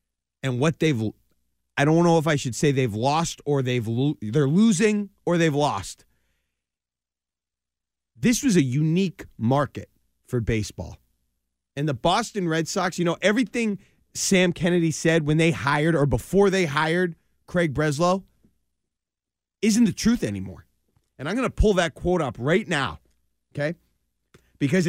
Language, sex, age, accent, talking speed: English, male, 30-49, American, 150 wpm